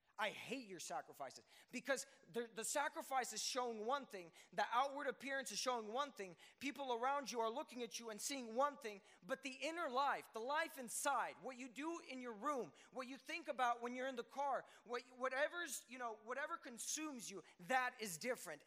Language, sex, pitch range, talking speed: English, male, 185-265 Hz, 200 wpm